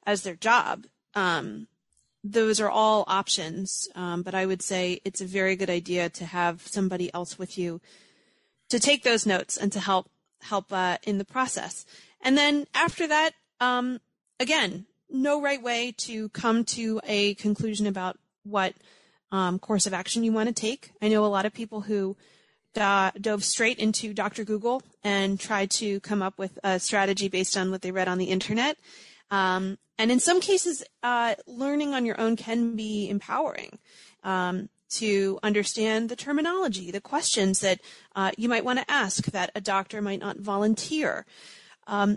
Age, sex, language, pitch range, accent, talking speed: 30-49, female, English, 190-225 Hz, American, 175 wpm